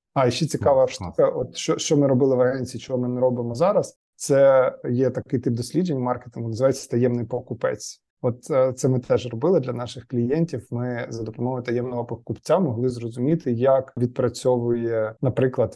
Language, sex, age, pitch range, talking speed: Ukrainian, male, 20-39, 120-130 Hz, 170 wpm